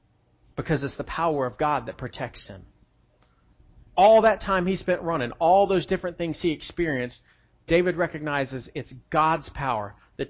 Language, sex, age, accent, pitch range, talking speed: English, male, 40-59, American, 135-200 Hz, 155 wpm